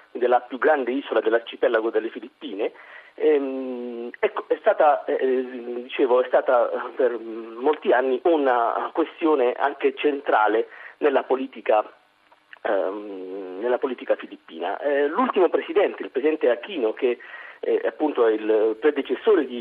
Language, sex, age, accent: Italian, male, 40-59, native